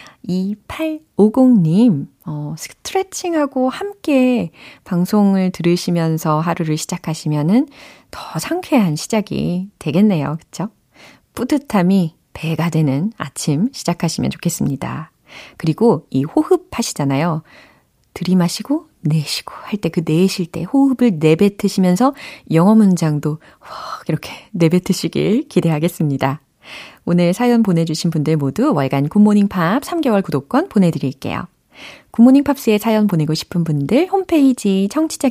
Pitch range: 160-245 Hz